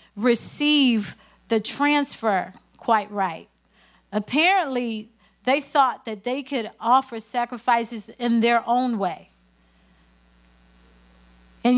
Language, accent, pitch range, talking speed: English, American, 200-270 Hz, 90 wpm